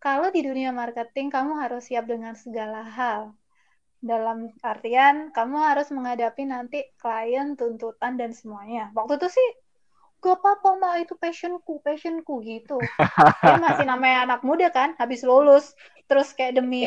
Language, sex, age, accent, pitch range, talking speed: Indonesian, female, 20-39, native, 240-315 Hz, 145 wpm